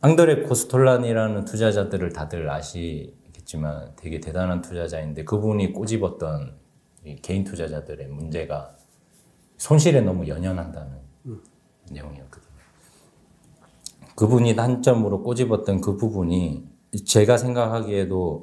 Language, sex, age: Korean, male, 40-59